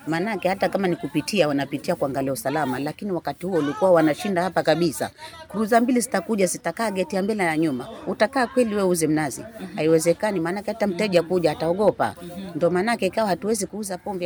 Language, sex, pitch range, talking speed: Swahili, female, 150-190 Hz, 175 wpm